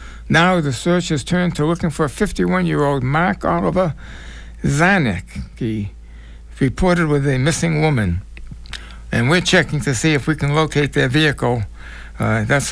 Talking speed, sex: 140 wpm, male